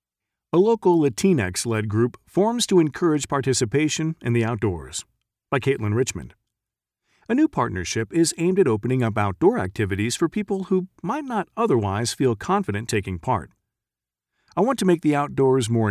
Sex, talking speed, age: male, 155 wpm, 40-59